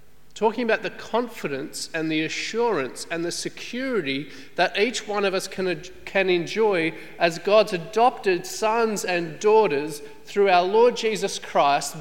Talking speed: 140 wpm